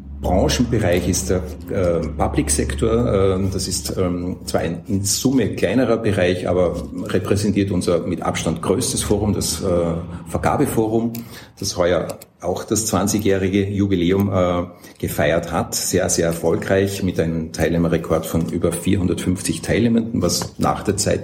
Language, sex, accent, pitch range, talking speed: German, male, Austrian, 85-100 Hz, 120 wpm